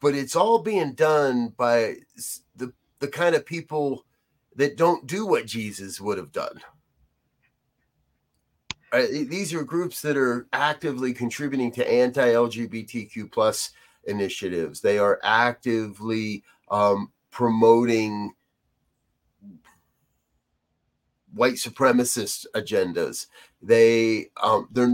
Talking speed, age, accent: 105 wpm, 40-59, American